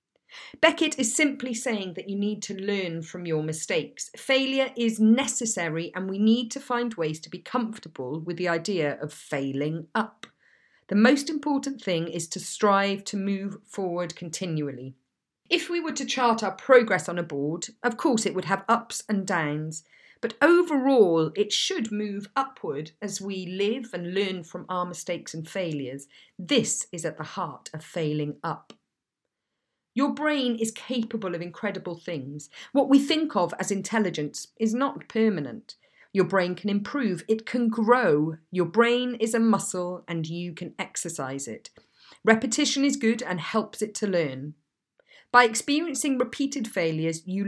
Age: 40-59